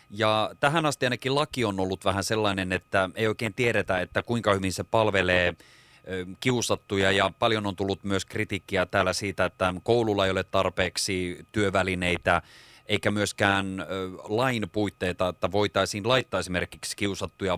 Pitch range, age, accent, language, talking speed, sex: 90-105 Hz, 30-49, native, Finnish, 145 wpm, male